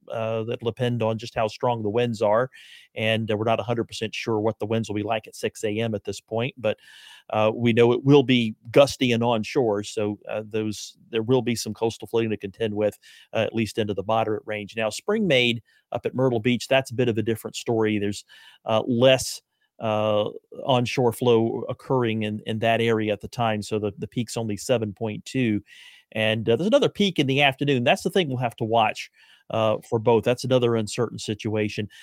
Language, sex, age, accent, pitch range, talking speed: English, male, 40-59, American, 110-125 Hz, 215 wpm